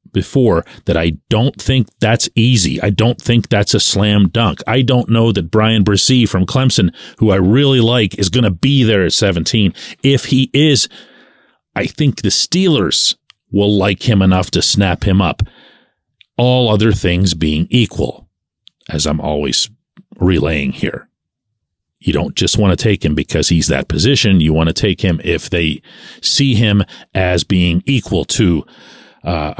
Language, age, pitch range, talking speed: English, 40-59, 95-130 Hz, 170 wpm